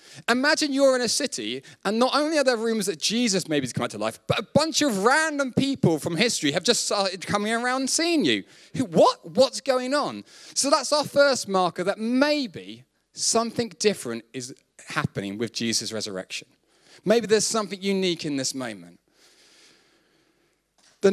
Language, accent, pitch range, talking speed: English, British, 155-230 Hz, 175 wpm